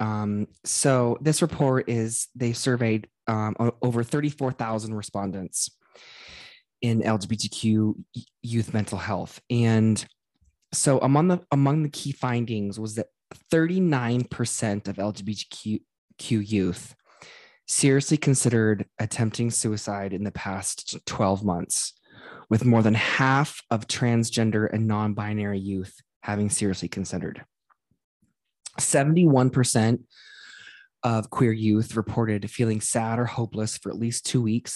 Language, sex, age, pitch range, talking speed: English, male, 20-39, 105-125 Hz, 115 wpm